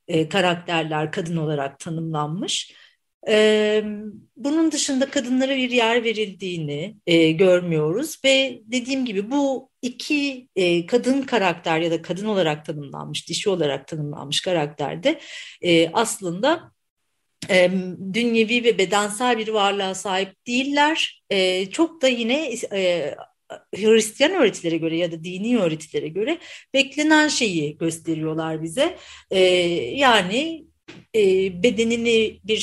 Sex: female